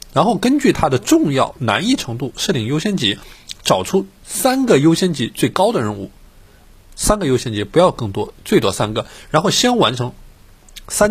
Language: Chinese